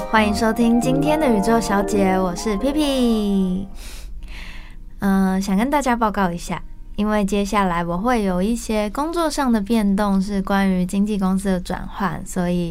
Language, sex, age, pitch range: Chinese, female, 20-39, 180-215 Hz